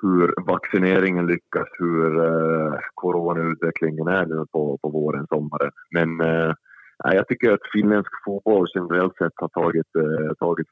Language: English